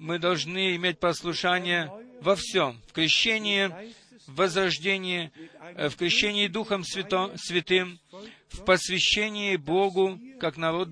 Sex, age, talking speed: male, 40-59, 110 wpm